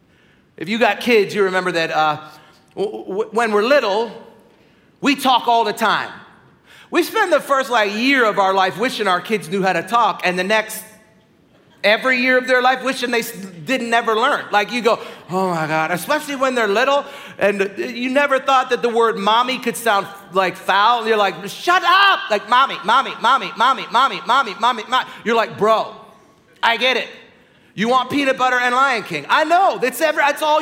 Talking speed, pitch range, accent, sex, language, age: 200 wpm, 200-260 Hz, American, male, English, 40-59